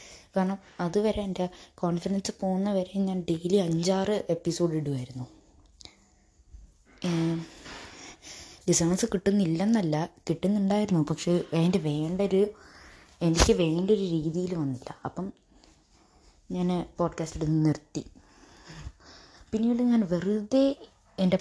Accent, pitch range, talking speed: native, 155-190 Hz, 80 wpm